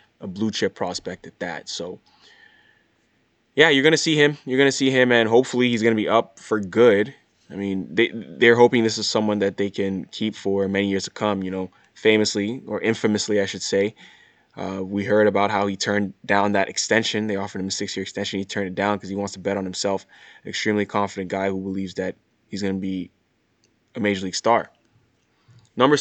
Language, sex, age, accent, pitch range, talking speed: English, male, 20-39, American, 100-110 Hz, 220 wpm